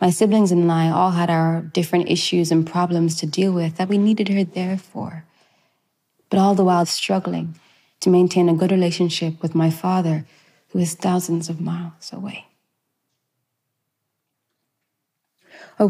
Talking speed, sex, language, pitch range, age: 150 wpm, female, Arabic, 160-195 Hz, 20-39